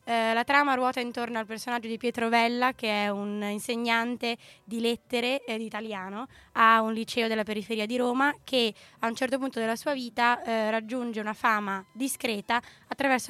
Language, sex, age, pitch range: Italian, female, 20-39, 210-245 Hz